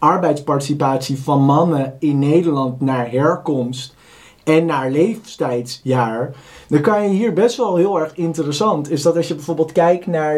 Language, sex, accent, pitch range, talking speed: Dutch, male, Dutch, 140-170 Hz, 150 wpm